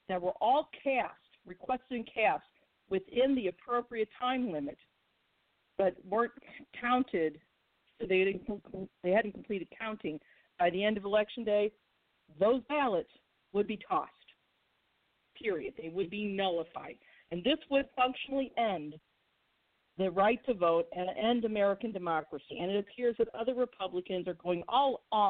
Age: 50-69